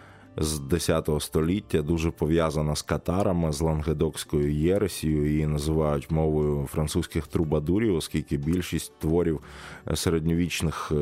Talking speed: 105 wpm